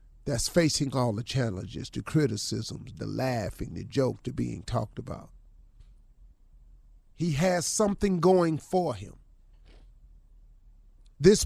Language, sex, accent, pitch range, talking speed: English, male, American, 120-190 Hz, 115 wpm